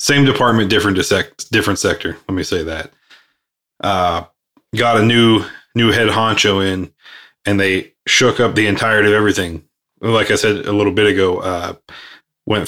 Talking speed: 165 wpm